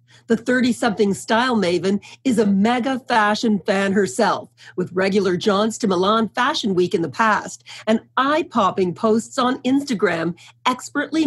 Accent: American